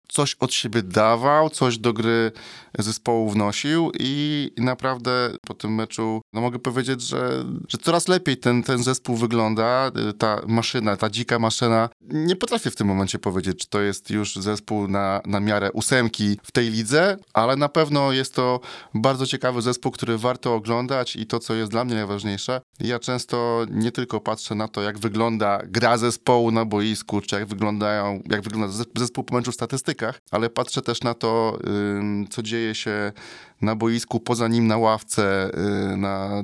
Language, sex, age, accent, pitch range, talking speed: Polish, male, 20-39, native, 105-120 Hz, 170 wpm